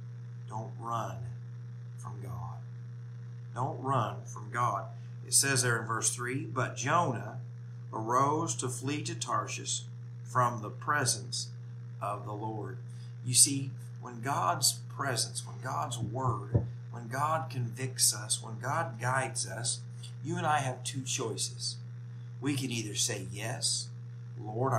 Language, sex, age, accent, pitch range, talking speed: English, male, 50-69, American, 120-125 Hz, 135 wpm